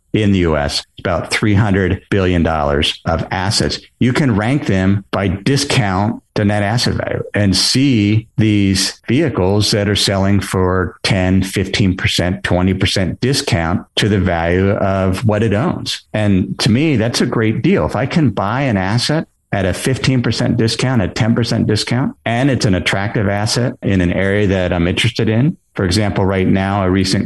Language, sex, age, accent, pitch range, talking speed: English, male, 50-69, American, 95-115 Hz, 165 wpm